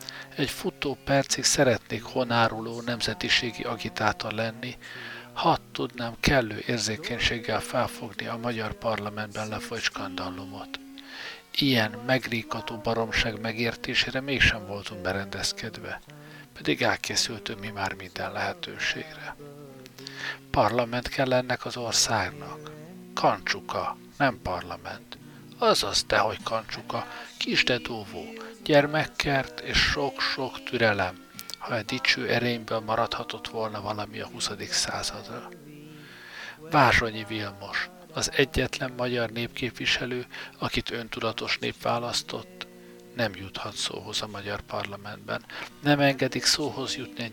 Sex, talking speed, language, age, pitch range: male, 100 wpm, Hungarian, 60-79, 105-130 Hz